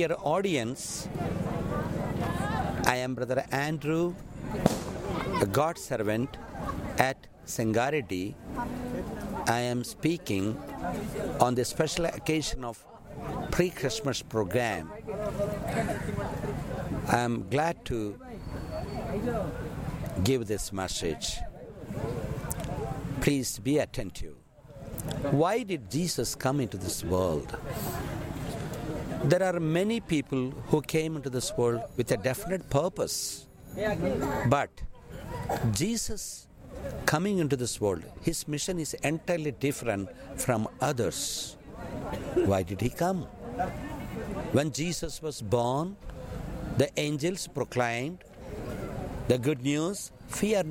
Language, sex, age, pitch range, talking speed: English, male, 60-79, 120-160 Hz, 95 wpm